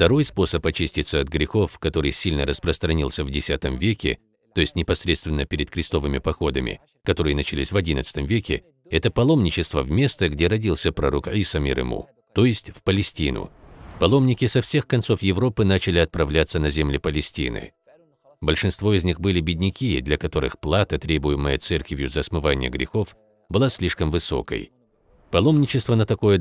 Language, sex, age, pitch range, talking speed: Russian, male, 50-69, 75-100 Hz, 145 wpm